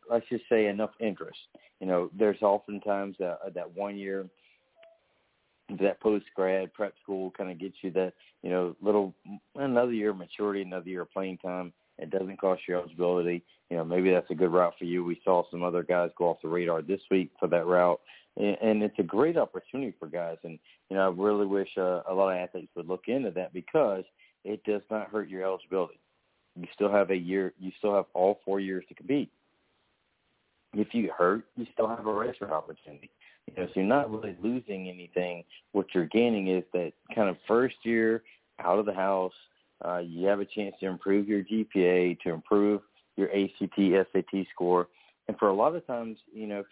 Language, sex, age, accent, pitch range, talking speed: English, male, 40-59, American, 90-105 Hz, 205 wpm